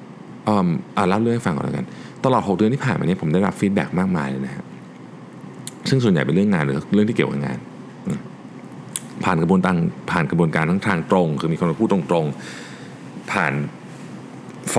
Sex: male